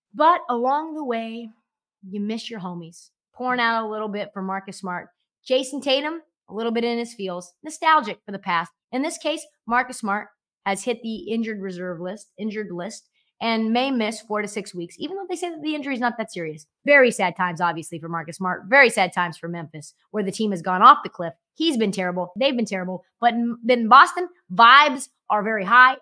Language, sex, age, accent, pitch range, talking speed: English, female, 30-49, American, 185-250 Hz, 210 wpm